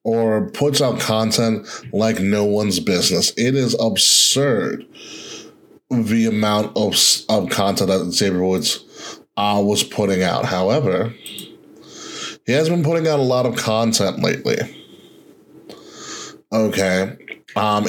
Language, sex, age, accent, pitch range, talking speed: English, male, 20-39, American, 105-135 Hz, 120 wpm